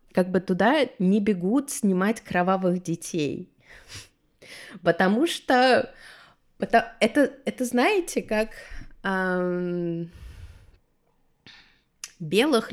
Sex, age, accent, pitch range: female, 20-39, native, 170-225 Hz